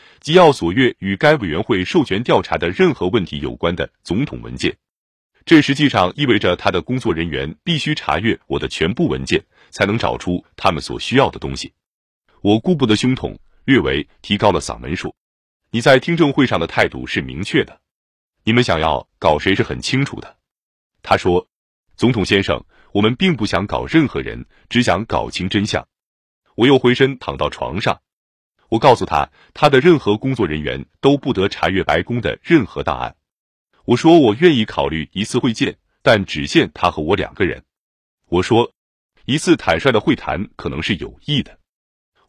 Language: Chinese